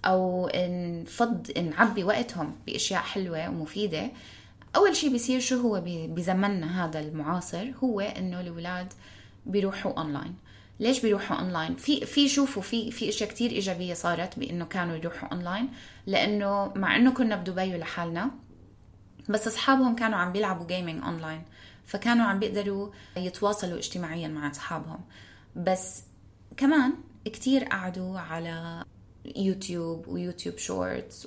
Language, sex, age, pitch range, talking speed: Arabic, female, 20-39, 155-205 Hz, 130 wpm